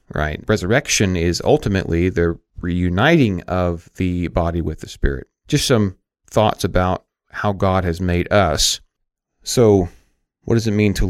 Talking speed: 145 wpm